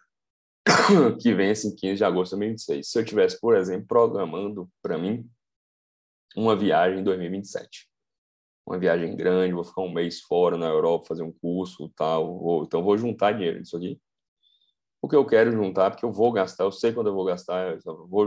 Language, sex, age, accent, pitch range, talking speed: Portuguese, male, 20-39, Brazilian, 80-105 Hz, 190 wpm